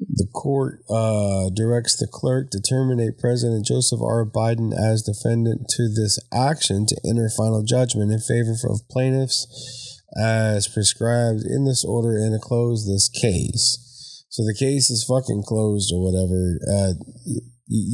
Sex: male